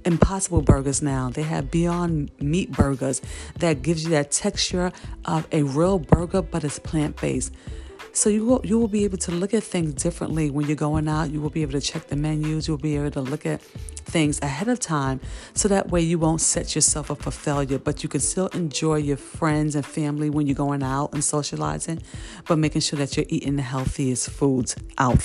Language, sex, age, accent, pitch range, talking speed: English, female, 40-59, American, 145-195 Hz, 210 wpm